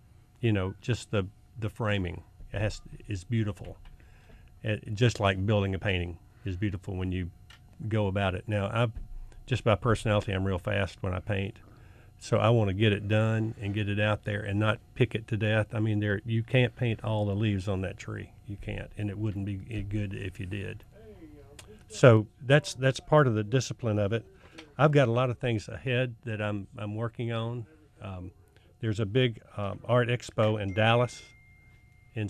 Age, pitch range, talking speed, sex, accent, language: 50-69, 100-115 Hz, 195 wpm, male, American, English